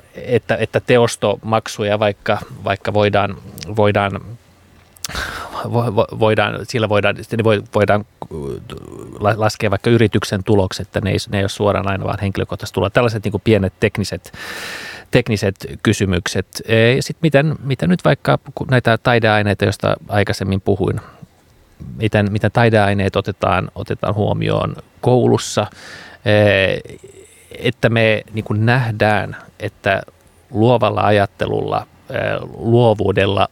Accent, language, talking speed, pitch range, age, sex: native, Finnish, 105 wpm, 100-115 Hz, 30-49, male